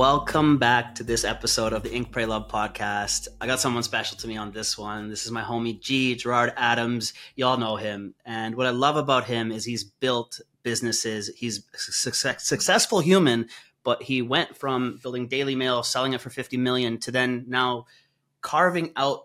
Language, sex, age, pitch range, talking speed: English, male, 30-49, 115-140 Hz, 195 wpm